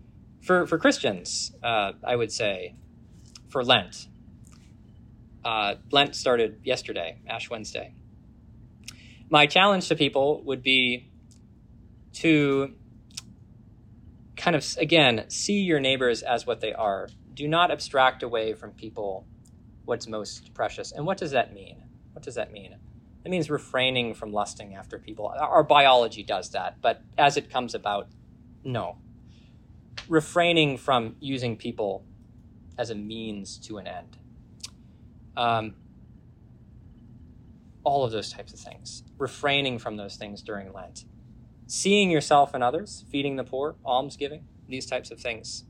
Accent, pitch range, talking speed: American, 110-135 Hz, 135 wpm